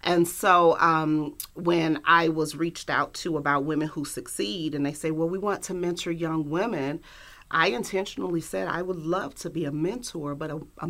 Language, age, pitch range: English, 40-59, 155-180 Hz